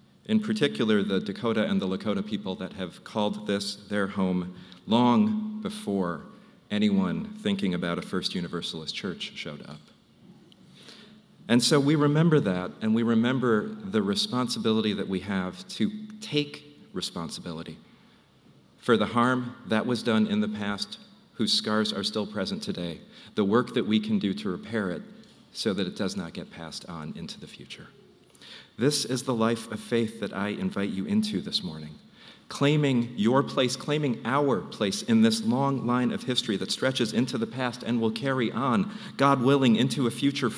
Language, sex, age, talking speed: English, male, 40-59, 170 wpm